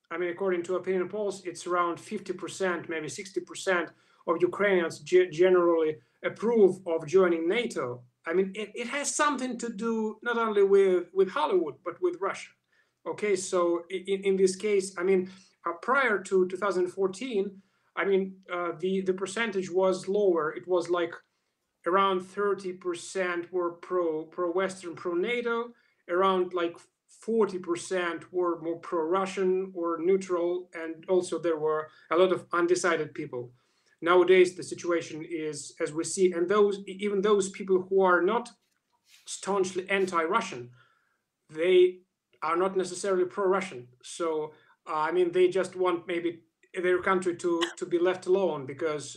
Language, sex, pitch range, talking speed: English, male, 170-195 Hz, 150 wpm